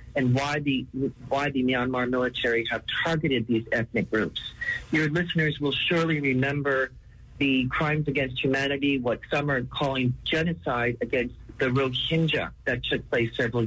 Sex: male